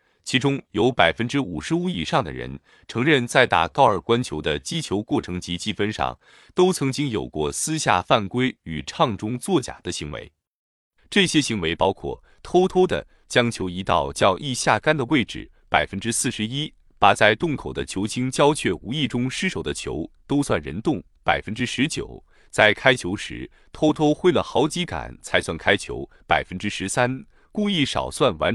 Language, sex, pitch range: Chinese, male, 95-155 Hz